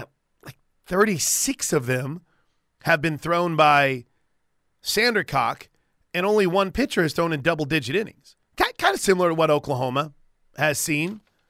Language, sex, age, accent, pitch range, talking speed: English, male, 30-49, American, 140-170 Hz, 130 wpm